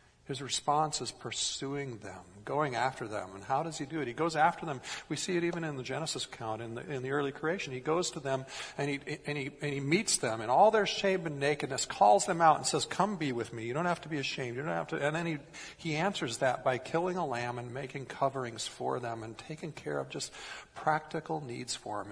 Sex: male